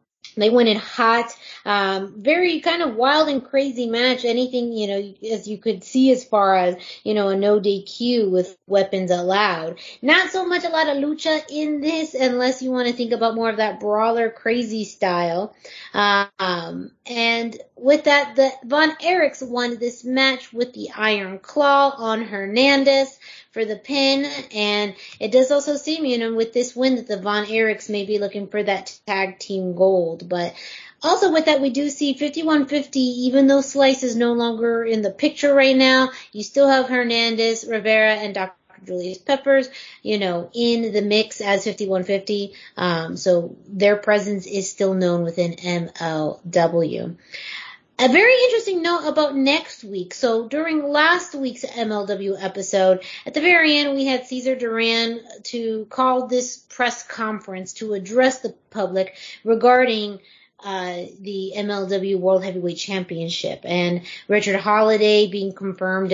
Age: 20-39